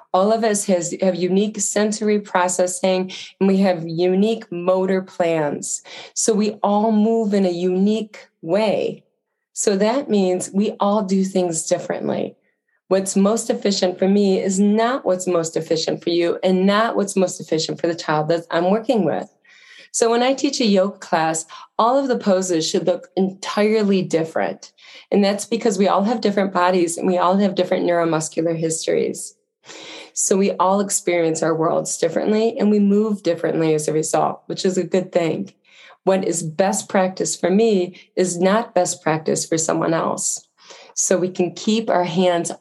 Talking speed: 170 wpm